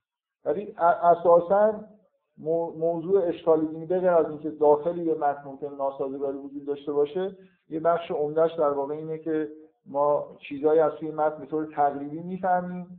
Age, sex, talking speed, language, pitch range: 50-69, male, 150 wpm, Persian, 145-180 Hz